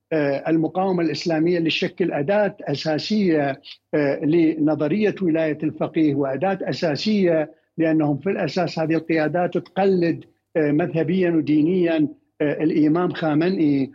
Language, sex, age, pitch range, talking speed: Arabic, male, 60-79, 150-185 Hz, 85 wpm